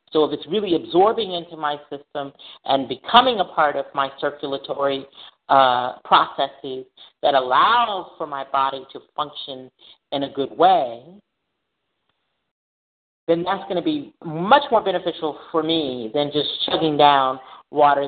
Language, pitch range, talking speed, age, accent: English, 130-160 Hz, 145 wpm, 40-59, American